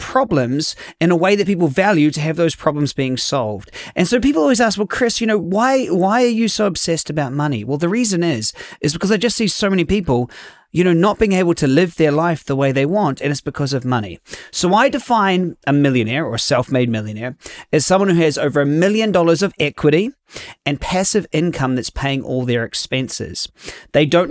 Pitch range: 135-180 Hz